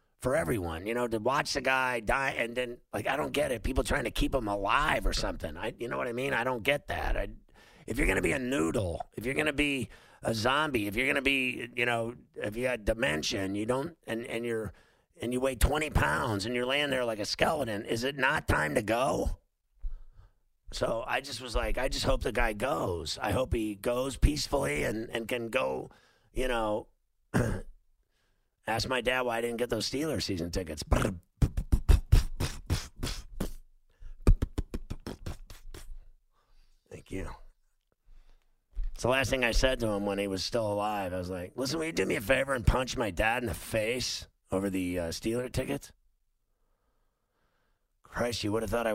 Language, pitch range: English, 100-125 Hz